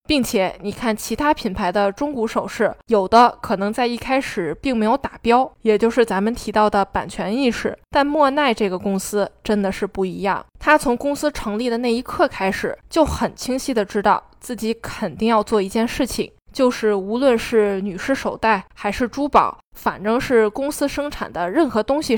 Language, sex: Chinese, female